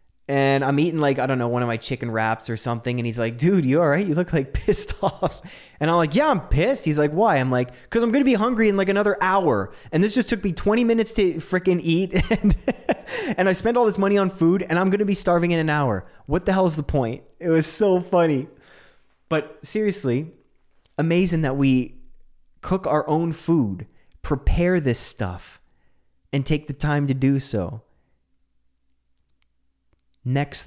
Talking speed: 205 wpm